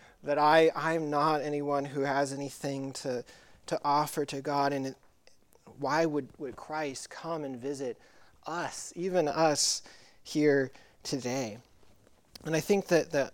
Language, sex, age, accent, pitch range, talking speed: English, male, 30-49, American, 130-155 Hz, 145 wpm